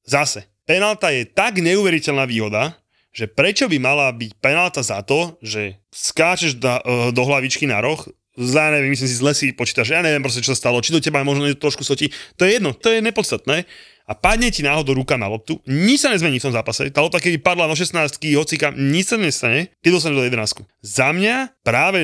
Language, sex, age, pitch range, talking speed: Slovak, male, 30-49, 120-160 Hz, 200 wpm